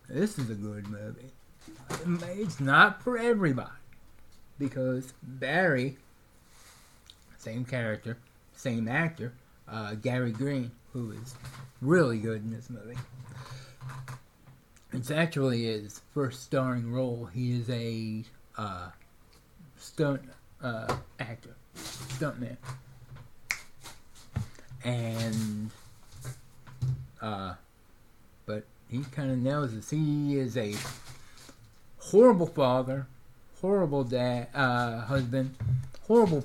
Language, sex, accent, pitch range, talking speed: English, male, American, 115-135 Hz, 95 wpm